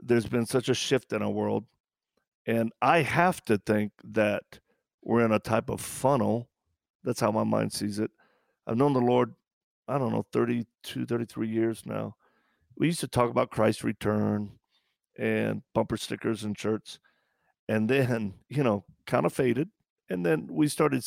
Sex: male